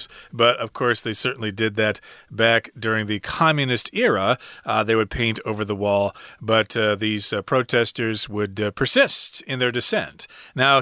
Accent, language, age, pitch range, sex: American, Chinese, 40-59, 115-150 Hz, male